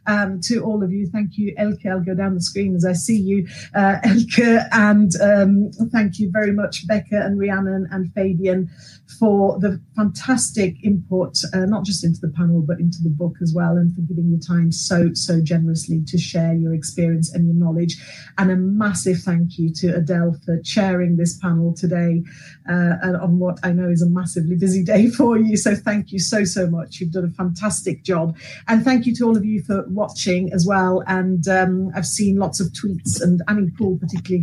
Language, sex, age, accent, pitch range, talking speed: English, female, 40-59, British, 170-195 Hz, 205 wpm